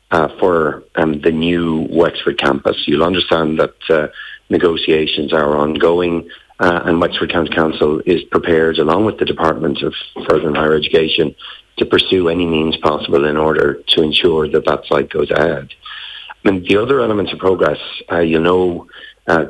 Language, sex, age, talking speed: English, male, 50-69, 165 wpm